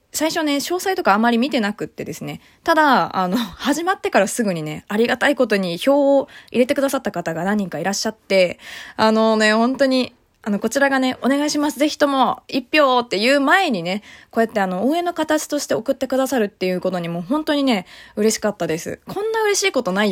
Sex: female